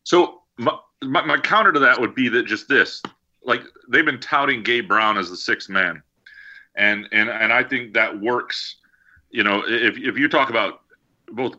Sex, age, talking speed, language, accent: male, 40-59, 190 wpm, English, American